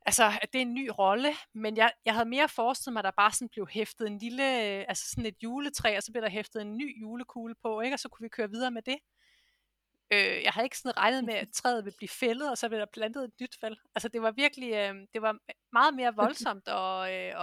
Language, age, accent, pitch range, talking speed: Danish, 30-49, native, 200-245 Hz, 260 wpm